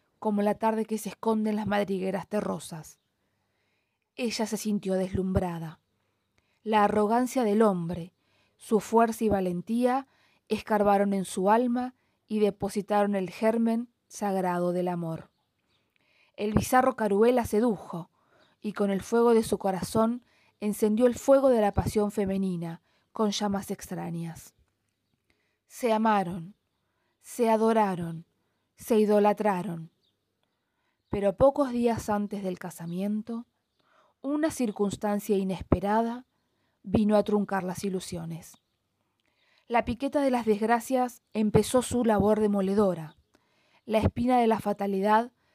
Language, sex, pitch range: Spanish, female, 190-230 Hz